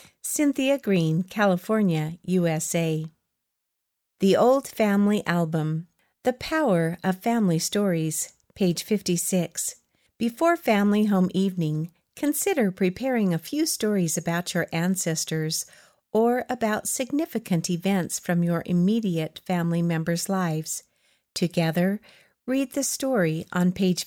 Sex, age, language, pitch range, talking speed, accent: female, 50-69, English, 170-225 Hz, 105 wpm, American